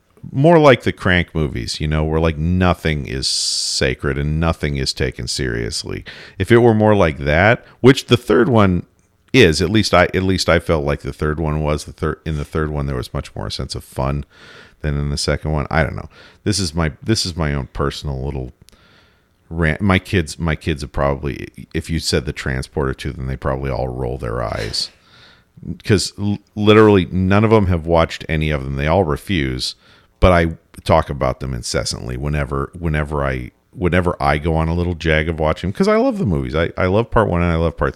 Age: 50-69